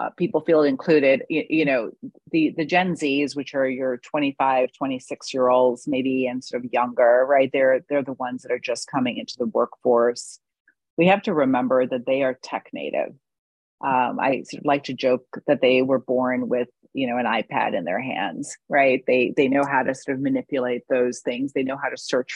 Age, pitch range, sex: 30-49, 130-165 Hz, female